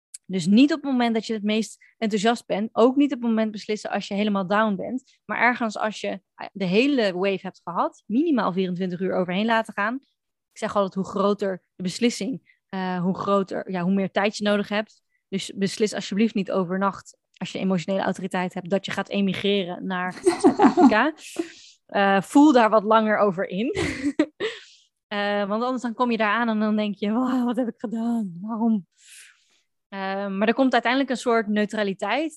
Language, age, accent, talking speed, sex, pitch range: Dutch, 20-39, Dutch, 185 wpm, female, 195-230 Hz